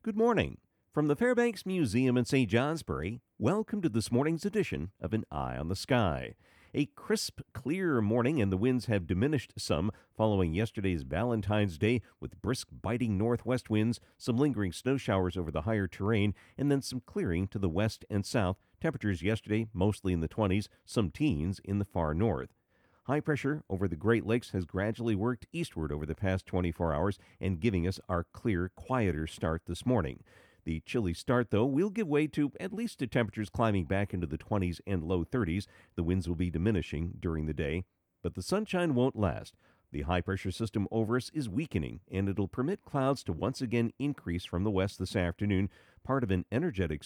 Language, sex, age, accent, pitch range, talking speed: English, male, 50-69, American, 90-125 Hz, 190 wpm